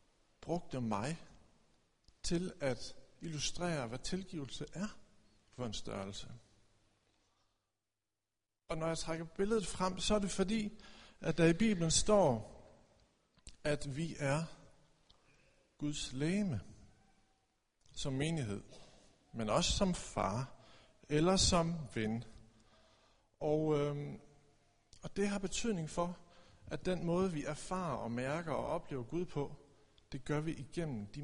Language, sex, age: Danish, male, 60-79